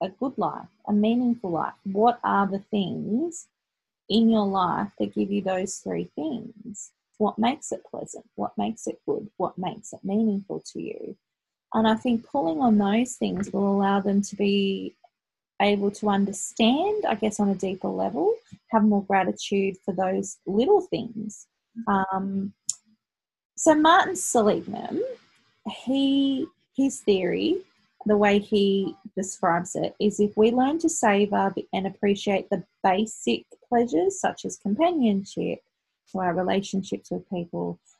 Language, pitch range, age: English, 195-240 Hz, 30-49